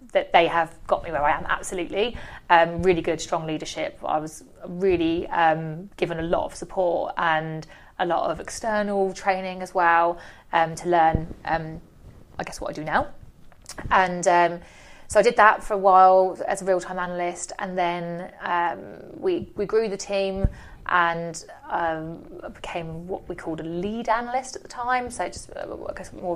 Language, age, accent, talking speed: English, 30-49, British, 180 wpm